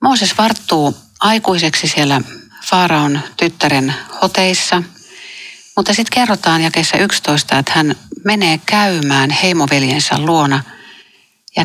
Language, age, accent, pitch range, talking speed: Finnish, 60-79, native, 140-180 Hz, 100 wpm